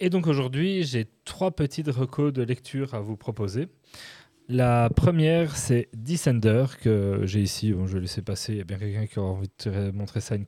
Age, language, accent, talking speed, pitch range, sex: 30-49, French, French, 220 wpm, 110-140 Hz, male